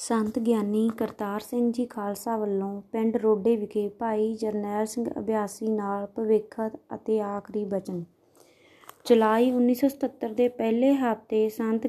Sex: female